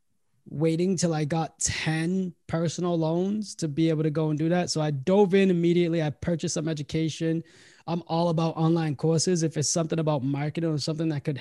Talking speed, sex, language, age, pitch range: 200 wpm, male, English, 20-39, 145-165 Hz